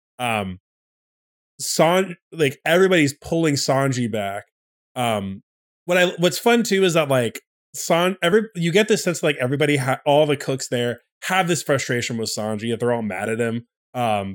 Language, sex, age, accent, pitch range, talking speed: English, male, 20-39, American, 115-145 Hz, 175 wpm